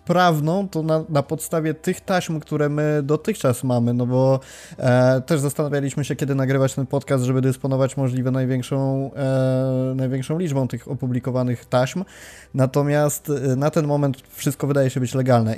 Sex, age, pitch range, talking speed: male, 20-39, 130-150 Hz, 145 wpm